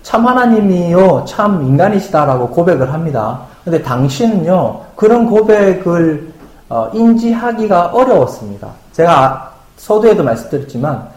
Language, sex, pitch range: Korean, male, 135-215 Hz